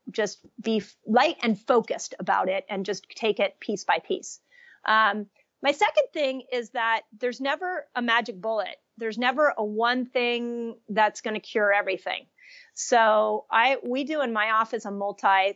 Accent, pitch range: American, 200-245 Hz